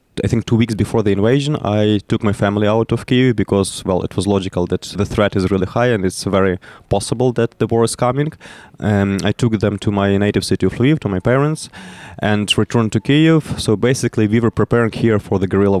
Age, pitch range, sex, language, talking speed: 20-39, 100-115 Hz, male, English, 230 wpm